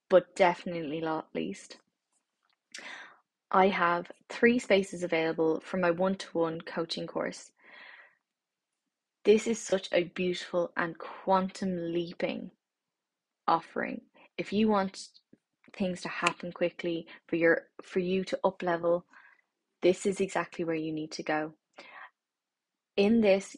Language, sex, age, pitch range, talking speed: English, female, 20-39, 175-205 Hz, 115 wpm